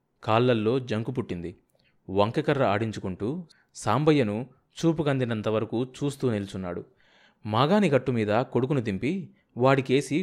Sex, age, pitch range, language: male, 30-49, 105-145 Hz, Telugu